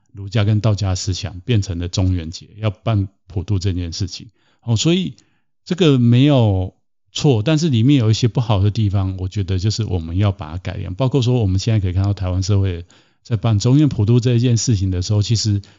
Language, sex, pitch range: Chinese, male, 95-125 Hz